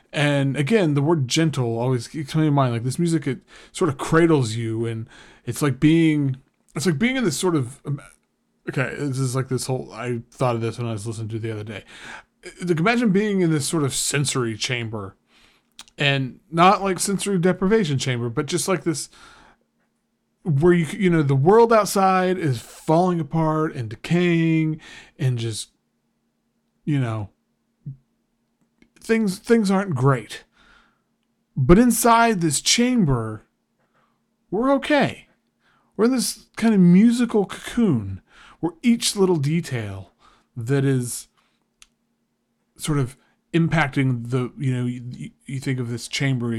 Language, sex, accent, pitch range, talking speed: English, male, American, 125-175 Hz, 150 wpm